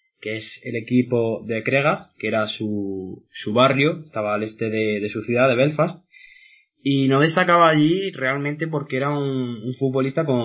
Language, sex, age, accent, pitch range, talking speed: Spanish, male, 20-39, Spanish, 110-145 Hz, 170 wpm